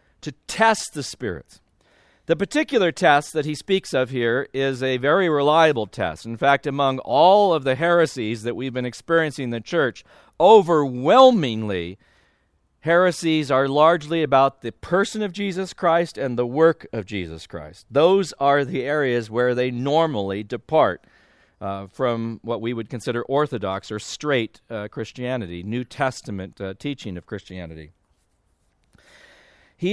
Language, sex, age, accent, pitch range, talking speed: English, male, 40-59, American, 105-160 Hz, 145 wpm